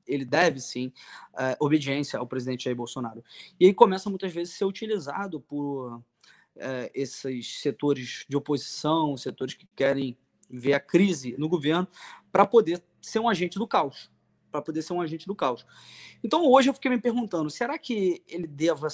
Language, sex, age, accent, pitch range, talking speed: Portuguese, male, 20-39, Brazilian, 145-185 Hz, 175 wpm